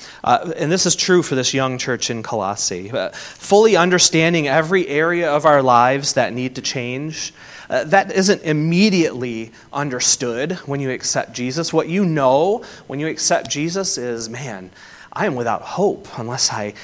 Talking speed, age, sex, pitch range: 170 wpm, 30-49, male, 125-170 Hz